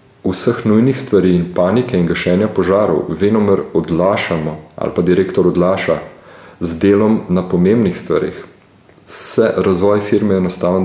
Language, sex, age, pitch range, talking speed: English, male, 40-59, 95-120 Hz, 125 wpm